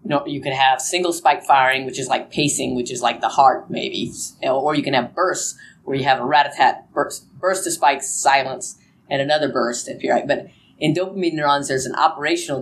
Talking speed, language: 215 wpm, English